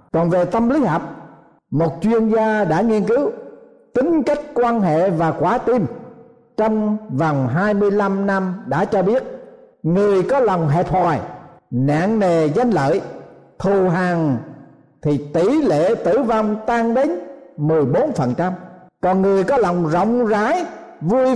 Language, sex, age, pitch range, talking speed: Vietnamese, male, 60-79, 155-225 Hz, 145 wpm